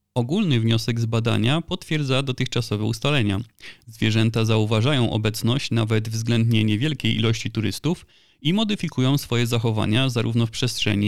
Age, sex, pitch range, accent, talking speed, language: 30-49, male, 110-135 Hz, native, 120 wpm, Polish